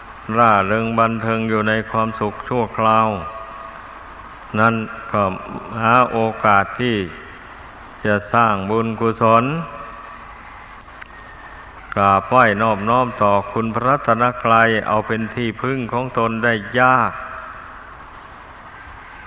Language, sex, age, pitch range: Thai, male, 60-79, 105-115 Hz